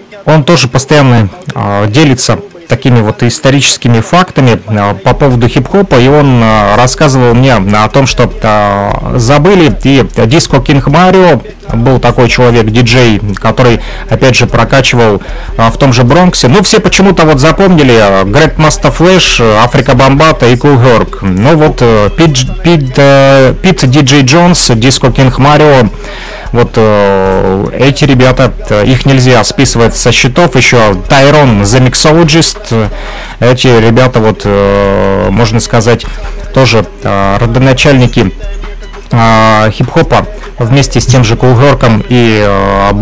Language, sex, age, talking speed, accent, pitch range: Russian, male, 30-49, 120 wpm, native, 115-150 Hz